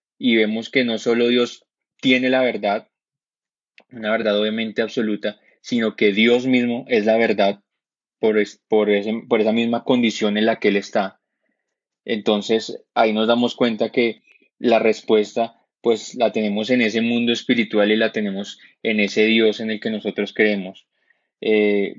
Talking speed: 165 wpm